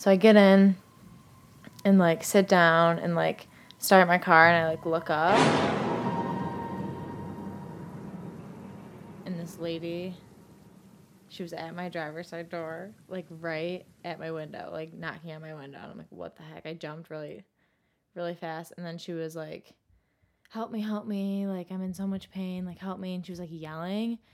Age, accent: 20-39, American